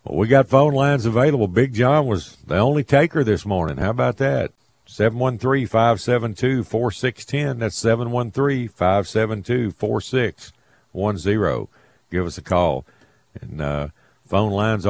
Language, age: English, 50-69